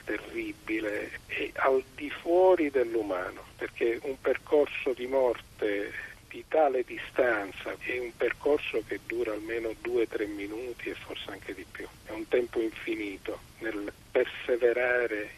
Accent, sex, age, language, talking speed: native, male, 50-69, Italian, 130 wpm